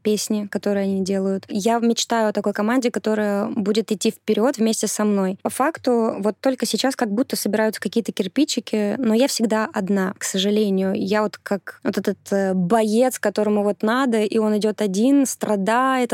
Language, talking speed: Russian, 175 wpm